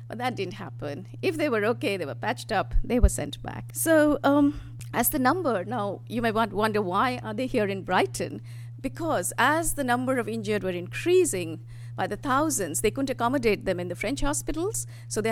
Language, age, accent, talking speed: English, 50-69, Indian, 205 wpm